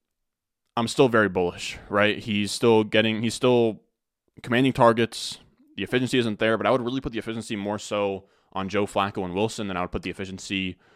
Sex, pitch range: male, 100-120 Hz